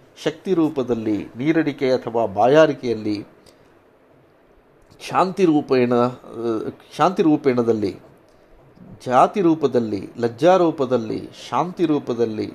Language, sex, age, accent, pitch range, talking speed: Kannada, male, 50-69, native, 120-160 Hz, 65 wpm